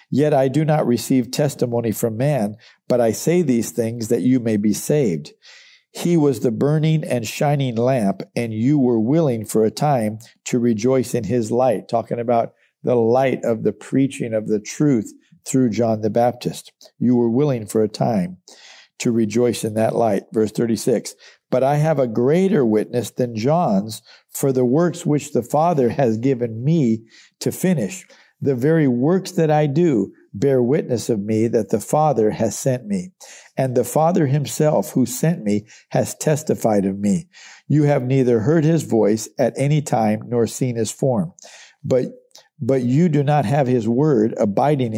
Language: English